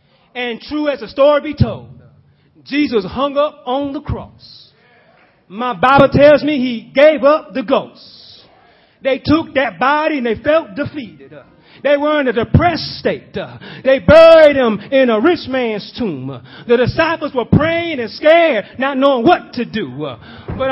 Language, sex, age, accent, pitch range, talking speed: English, male, 30-49, American, 245-320 Hz, 160 wpm